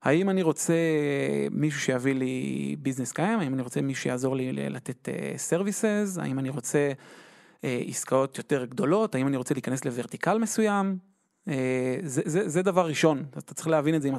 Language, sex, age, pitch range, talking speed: Hebrew, male, 30-49, 130-170 Hz, 180 wpm